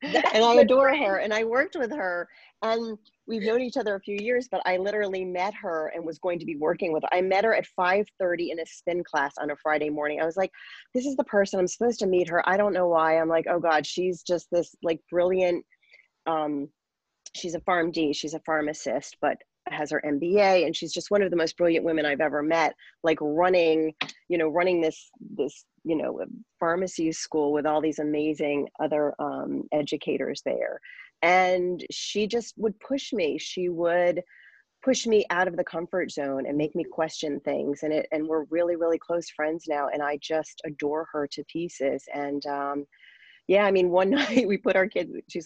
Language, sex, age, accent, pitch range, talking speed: English, female, 30-49, American, 155-195 Hz, 210 wpm